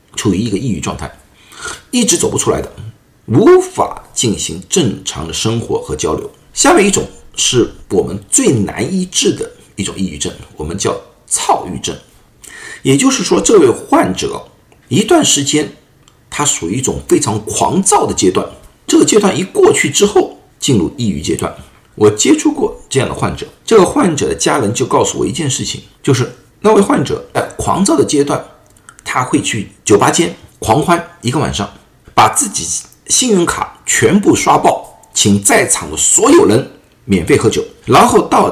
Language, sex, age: Chinese, male, 50-69